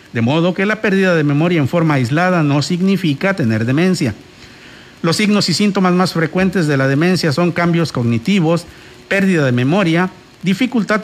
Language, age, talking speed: Spanish, 50-69, 165 wpm